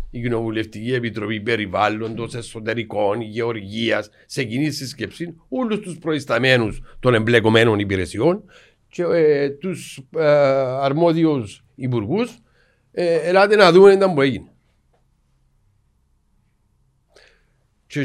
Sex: male